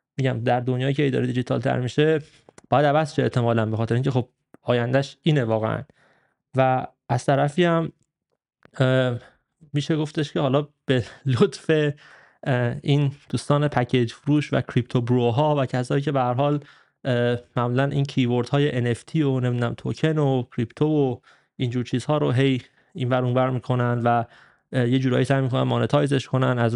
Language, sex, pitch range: Persian, male, 125-145 Hz